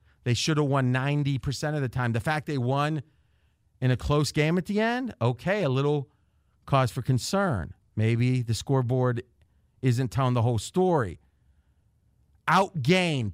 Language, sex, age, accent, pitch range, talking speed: English, male, 40-59, American, 105-155 Hz, 155 wpm